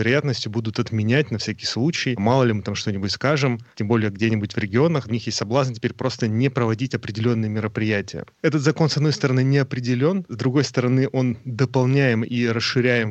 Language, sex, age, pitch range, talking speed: Russian, male, 30-49, 110-130 Hz, 190 wpm